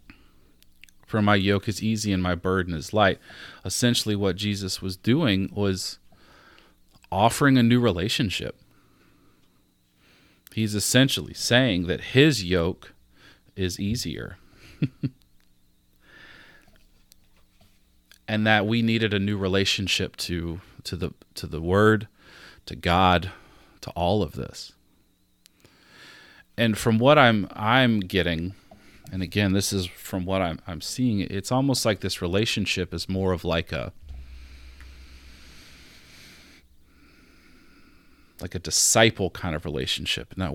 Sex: male